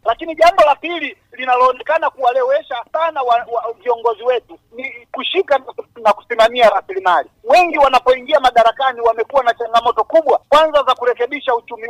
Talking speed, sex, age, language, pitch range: 120 wpm, male, 40-59, Swahili, 230-290 Hz